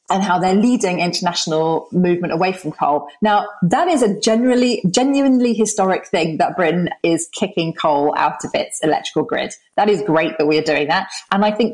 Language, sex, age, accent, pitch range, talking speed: English, female, 30-49, British, 160-220 Hz, 195 wpm